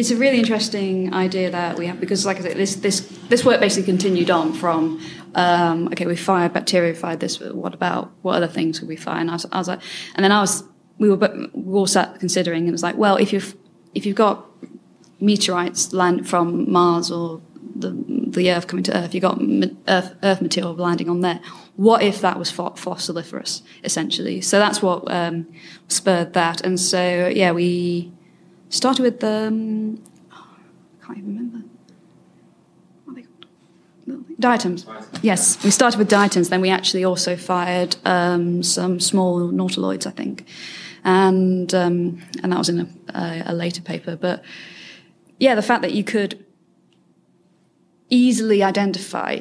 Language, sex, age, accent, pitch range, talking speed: English, female, 20-39, British, 175-195 Hz, 175 wpm